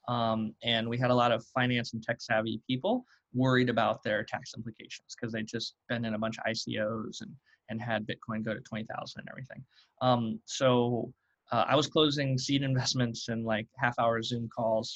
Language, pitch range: English, 115-130 Hz